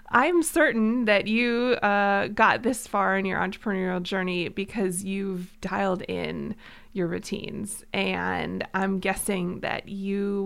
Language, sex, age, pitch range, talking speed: English, female, 20-39, 190-225 Hz, 130 wpm